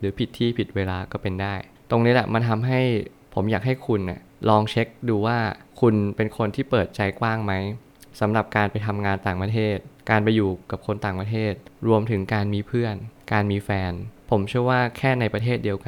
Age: 20-39